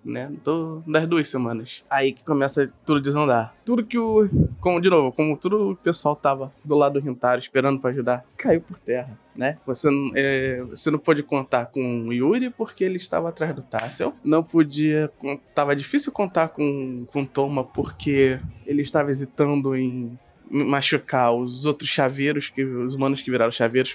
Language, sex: Portuguese, male